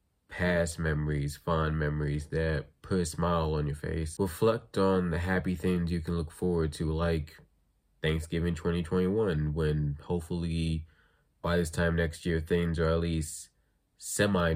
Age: 20-39